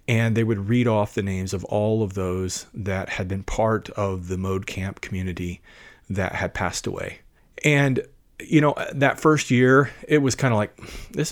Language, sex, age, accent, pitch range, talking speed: English, male, 30-49, American, 100-120 Hz, 190 wpm